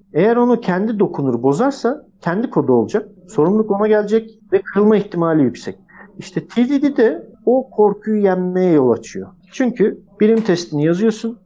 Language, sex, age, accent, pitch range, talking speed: Turkish, male, 50-69, native, 130-200 Hz, 140 wpm